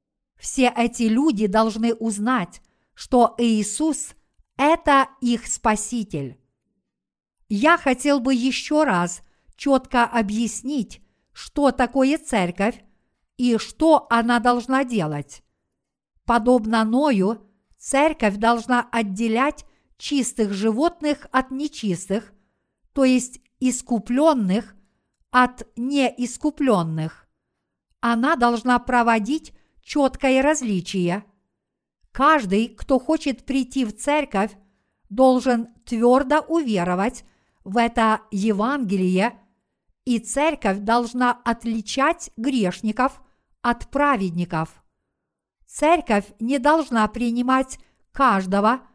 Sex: female